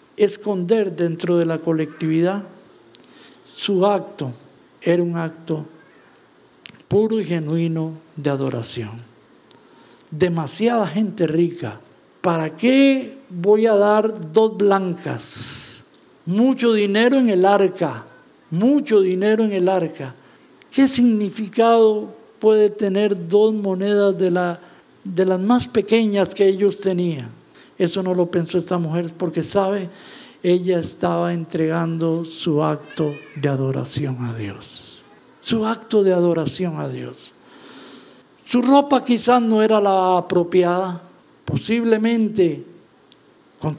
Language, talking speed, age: English, 110 wpm, 50-69